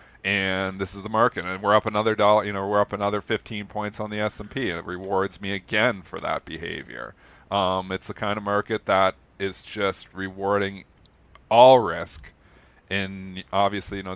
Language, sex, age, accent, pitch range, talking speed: English, male, 40-59, American, 90-105 Hz, 190 wpm